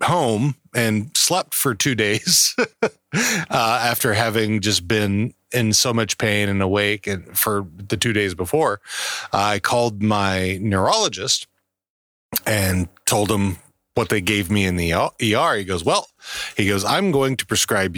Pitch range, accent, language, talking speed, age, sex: 95-120 Hz, American, English, 155 wpm, 40-59, male